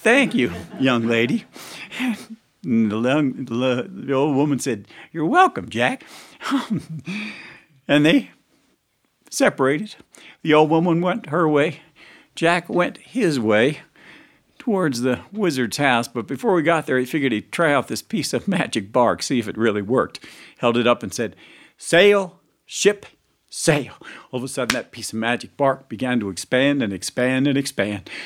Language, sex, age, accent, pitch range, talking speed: English, male, 50-69, American, 125-160 Hz, 155 wpm